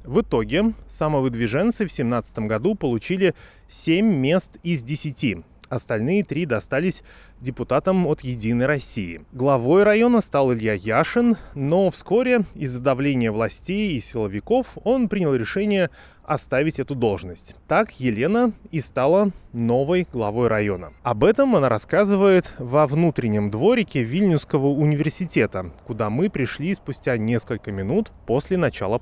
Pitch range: 115-150 Hz